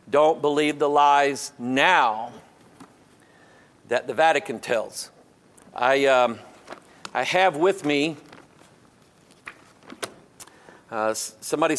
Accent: American